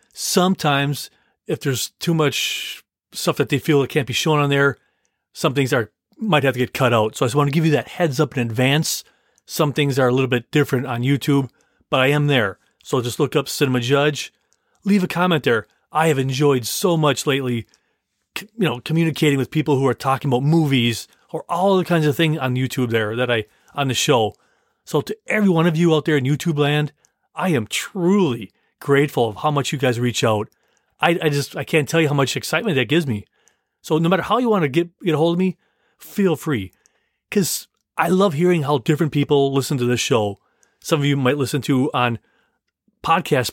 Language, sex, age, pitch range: English, male, 30-49, 130-165 Hz